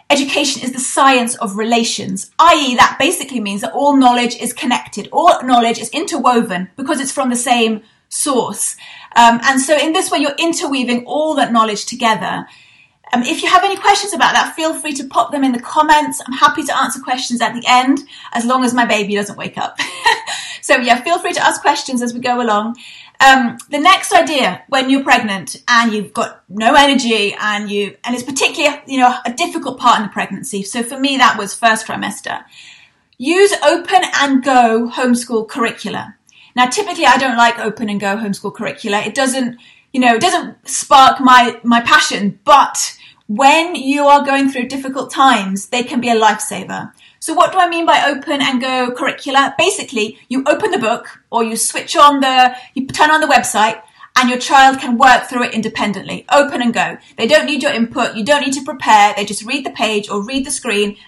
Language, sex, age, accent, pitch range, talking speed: English, female, 30-49, British, 230-285 Hz, 200 wpm